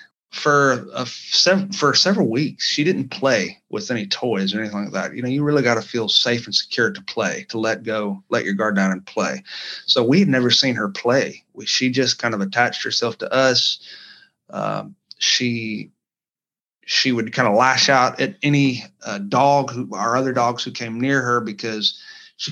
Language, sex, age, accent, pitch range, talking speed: English, male, 30-49, American, 110-135 Hz, 195 wpm